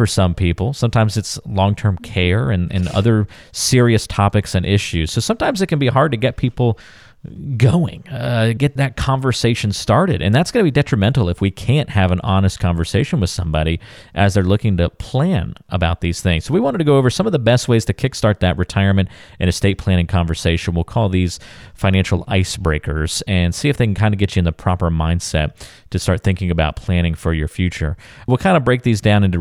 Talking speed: 210 wpm